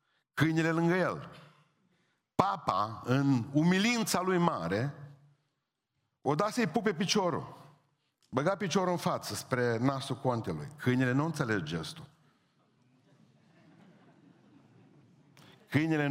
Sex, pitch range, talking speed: male, 130-165 Hz, 95 wpm